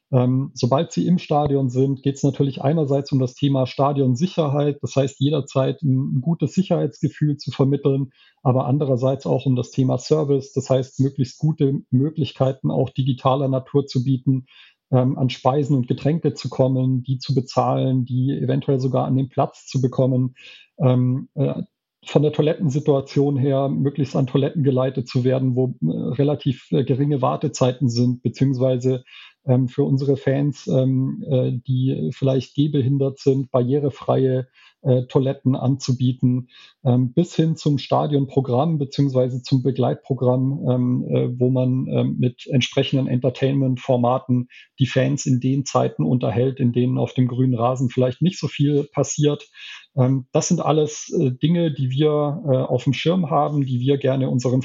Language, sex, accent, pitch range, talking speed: German, male, German, 130-140 Hz, 135 wpm